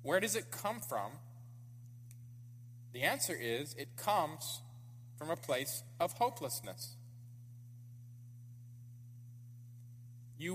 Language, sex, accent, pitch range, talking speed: English, male, American, 120-140 Hz, 90 wpm